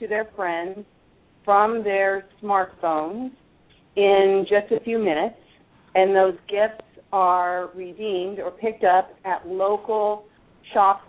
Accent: American